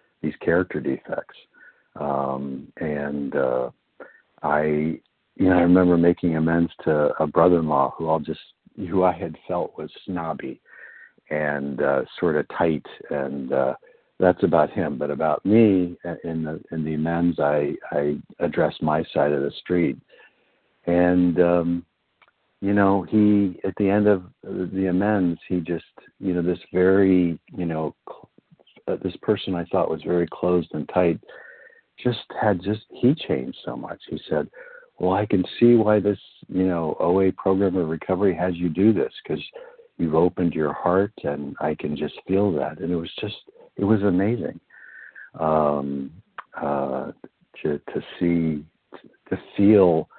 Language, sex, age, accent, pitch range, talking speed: English, male, 60-79, American, 75-95 Hz, 160 wpm